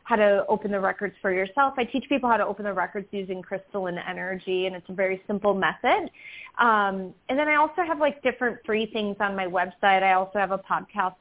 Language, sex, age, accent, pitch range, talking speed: English, female, 30-49, American, 190-225 Hz, 225 wpm